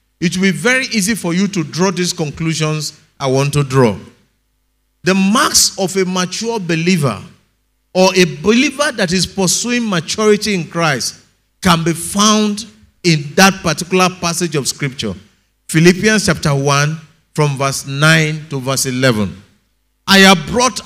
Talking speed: 145 wpm